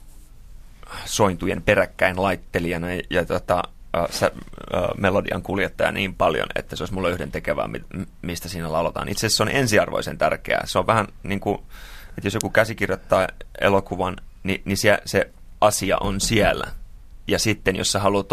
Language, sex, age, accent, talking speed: Finnish, male, 30-49, native, 160 wpm